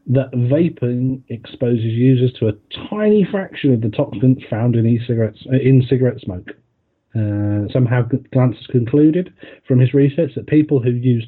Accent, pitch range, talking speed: British, 110-145 Hz, 150 wpm